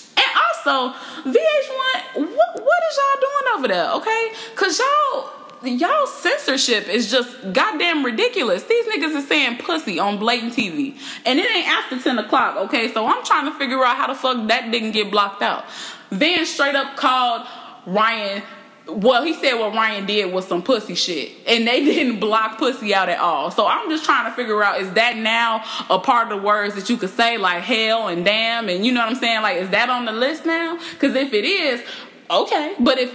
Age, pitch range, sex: 20-39, 190-275 Hz, female